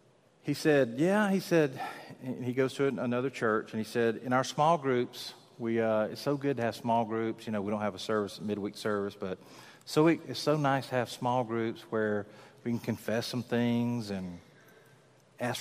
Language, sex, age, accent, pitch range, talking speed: English, male, 50-69, American, 105-140 Hz, 210 wpm